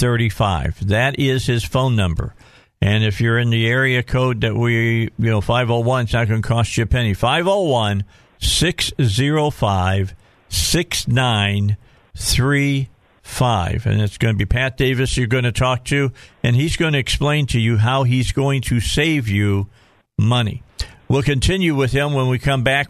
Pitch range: 110-135 Hz